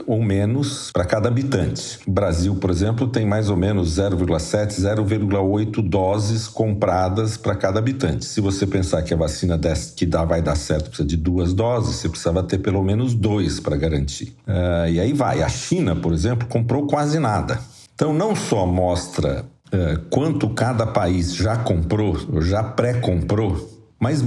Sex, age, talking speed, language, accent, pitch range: male, 50-69, 165 wpm, Portuguese, Brazilian, 90-125 Hz